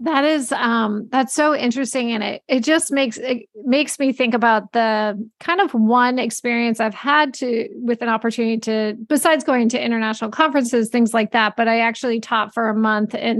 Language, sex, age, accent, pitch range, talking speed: English, female, 30-49, American, 230-285 Hz, 195 wpm